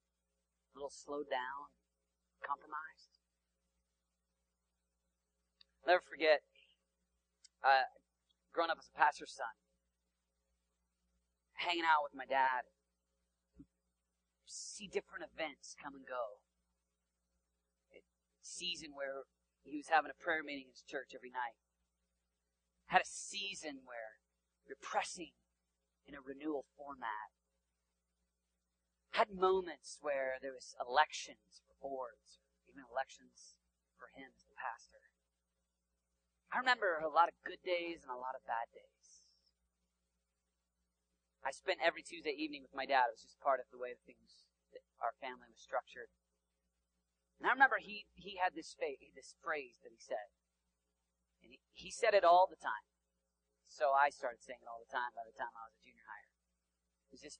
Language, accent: English, American